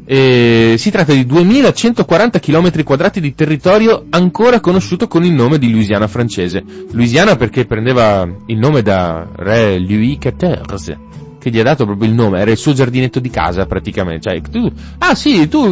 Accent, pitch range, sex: native, 105-160 Hz, male